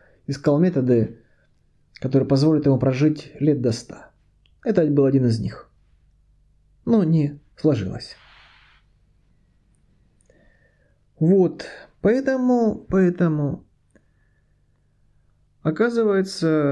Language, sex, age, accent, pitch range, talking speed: Russian, male, 30-49, native, 130-170 Hz, 75 wpm